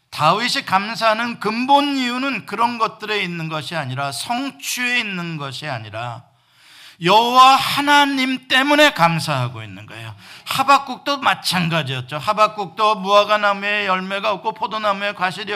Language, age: Korean, 50-69